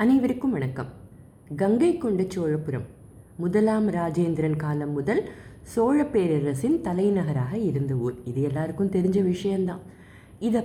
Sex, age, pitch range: female, 20-39, 140-210 Hz